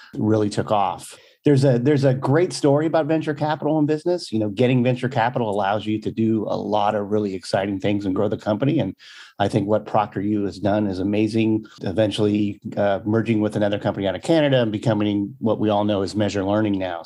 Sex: male